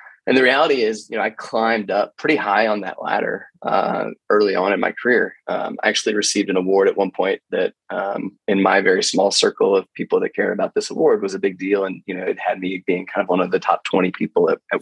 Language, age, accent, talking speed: English, 20-39, American, 260 wpm